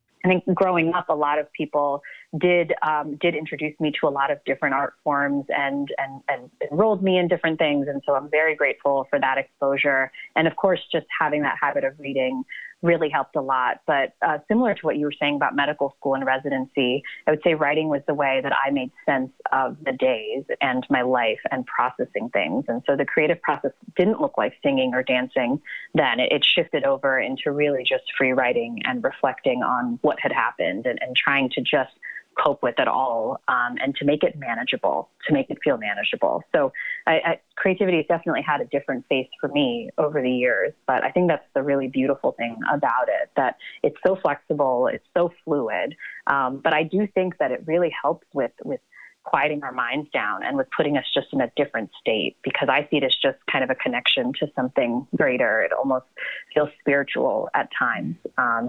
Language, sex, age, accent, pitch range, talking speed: English, female, 30-49, American, 140-180 Hz, 210 wpm